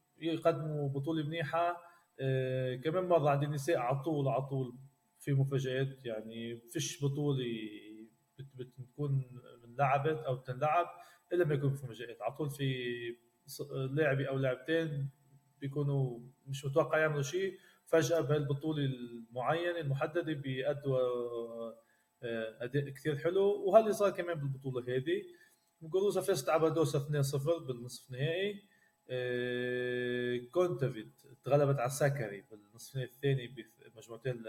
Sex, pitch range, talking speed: male, 125-165 Hz, 115 wpm